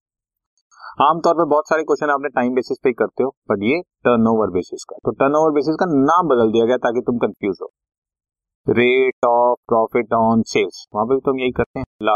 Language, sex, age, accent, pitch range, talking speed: Hindi, male, 30-49, native, 110-140 Hz, 160 wpm